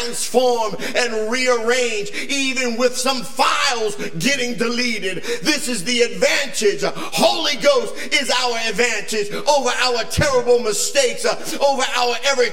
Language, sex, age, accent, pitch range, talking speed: English, male, 50-69, American, 250-310 Hz, 125 wpm